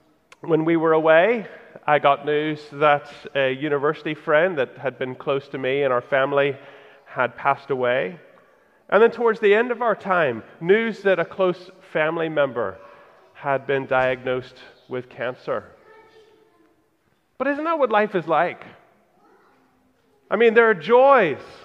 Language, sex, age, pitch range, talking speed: English, male, 30-49, 155-220 Hz, 150 wpm